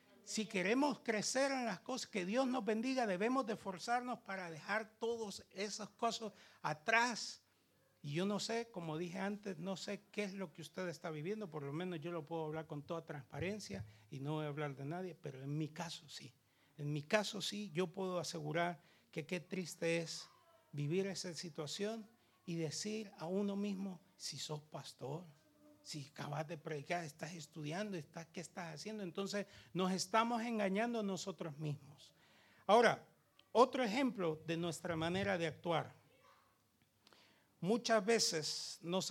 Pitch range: 155-215 Hz